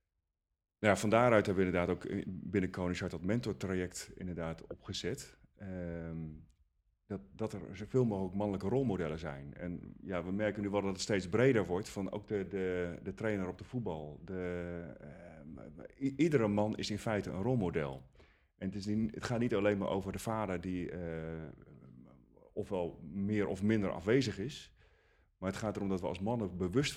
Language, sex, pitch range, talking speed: Dutch, male, 85-105 Hz, 180 wpm